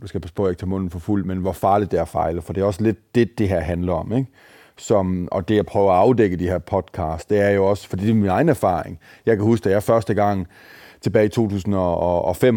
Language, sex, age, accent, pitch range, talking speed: Danish, male, 30-49, native, 95-115 Hz, 265 wpm